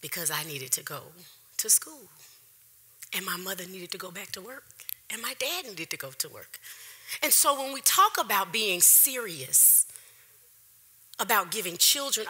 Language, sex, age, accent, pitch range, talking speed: English, female, 30-49, American, 165-250 Hz, 170 wpm